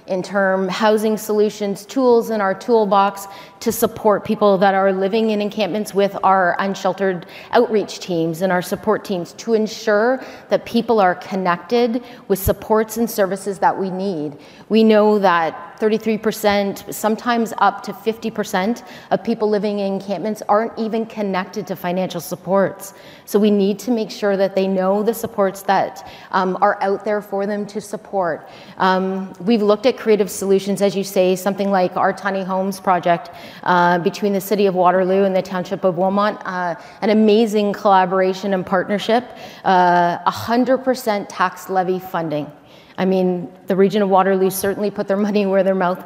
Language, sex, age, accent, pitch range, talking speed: English, female, 30-49, American, 190-215 Hz, 165 wpm